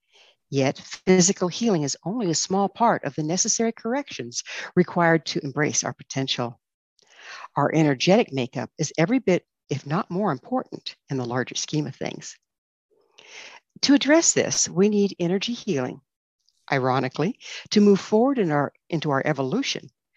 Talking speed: 145 wpm